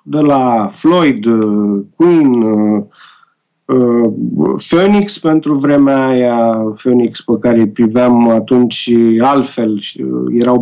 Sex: male